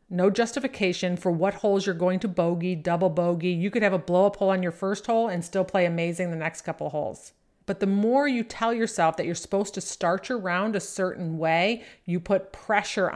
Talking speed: 225 wpm